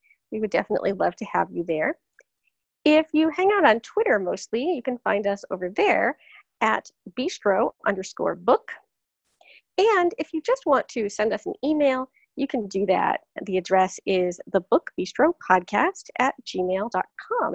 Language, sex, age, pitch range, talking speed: English, female, 30-49, 190-310 Hz, 155 wpm